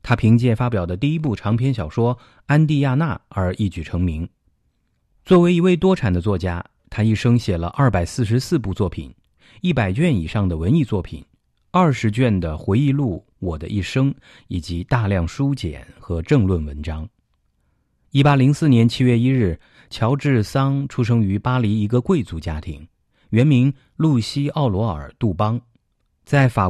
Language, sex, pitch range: English, male, 90-130 Hz